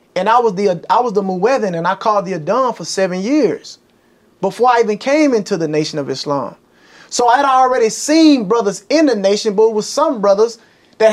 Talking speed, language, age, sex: 210 wpm, English, 30-49, male